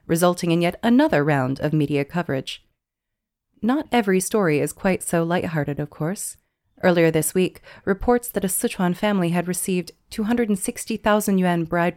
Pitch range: 160-195 Hz